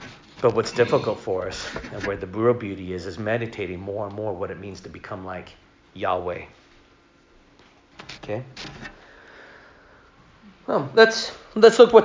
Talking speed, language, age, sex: 145 wpm, English, 40-59, male